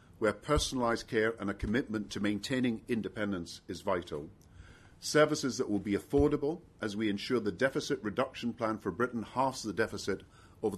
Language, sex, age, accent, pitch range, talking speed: English, male, 50-69, British, 95-120 Hz, 160 wpm